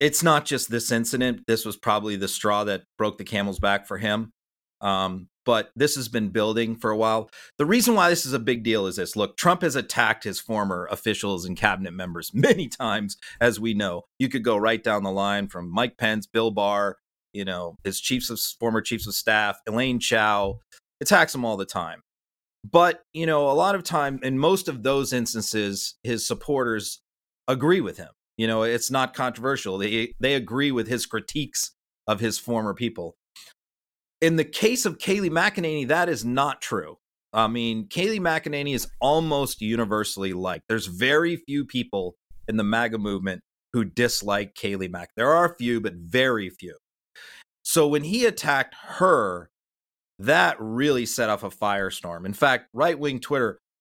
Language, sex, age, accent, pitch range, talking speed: English, male, 30-49, American, 100-135 Hz, 180 wpm